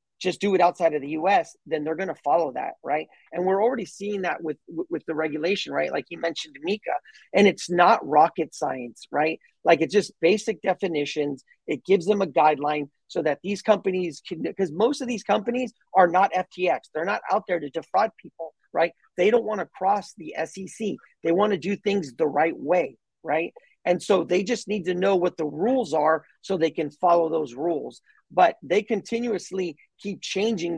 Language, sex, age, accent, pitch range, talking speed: English, male, 40-59, American, 165-225 Hz, 195 wpm